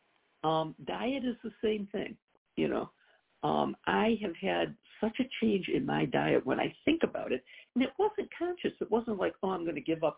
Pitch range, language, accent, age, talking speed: 180-260 Hz, English, American, 60-79, 210 wpm